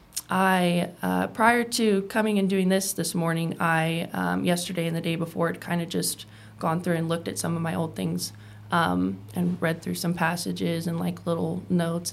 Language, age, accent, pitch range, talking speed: English, 20-39, American, 165-190 Hz, 205 wpm